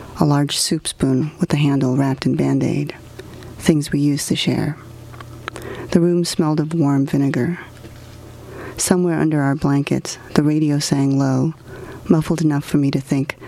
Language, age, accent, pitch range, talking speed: English, 40-59, American, 125-155 Hz, 155 wpm